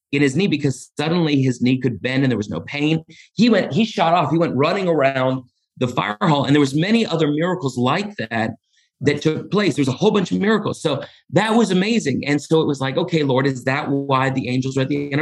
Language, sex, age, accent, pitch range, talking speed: English, male, 40-59, American, 130-160 Hz, 250 wpm